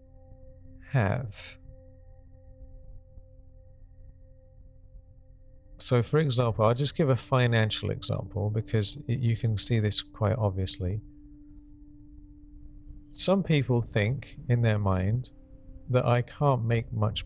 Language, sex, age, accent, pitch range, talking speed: English, male, 40-59, British, 95-120 Hz, 100 wpm